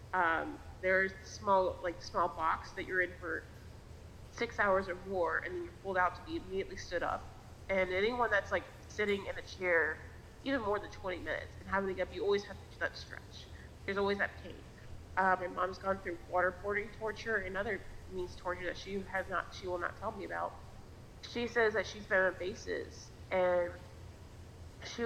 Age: 20-39